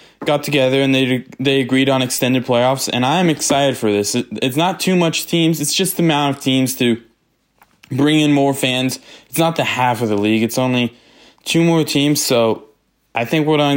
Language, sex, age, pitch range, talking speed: English, male, 20-39, 115-145 Hz, 205 wpm